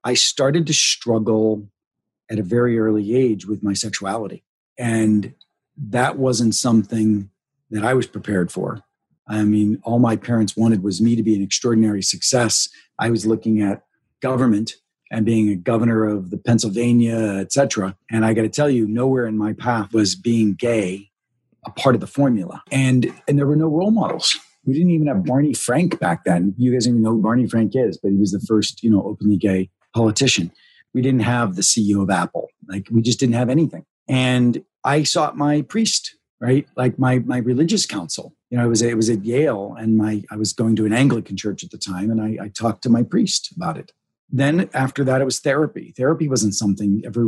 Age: 40-59